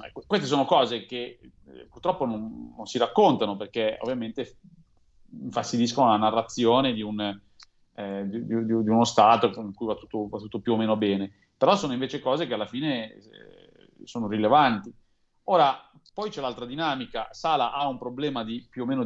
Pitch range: 105-120 Hz